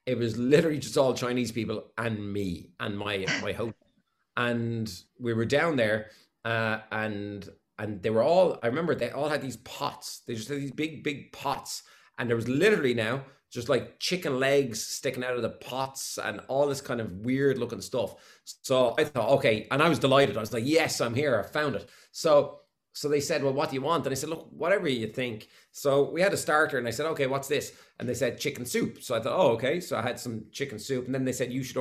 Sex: male